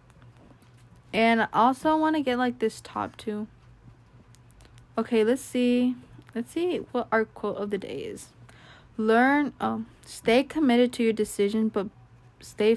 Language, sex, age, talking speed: English, female, 20-39, 145 wpm